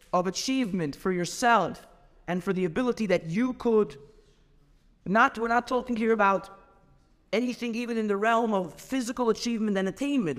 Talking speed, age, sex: 155 wpm, 50-69, male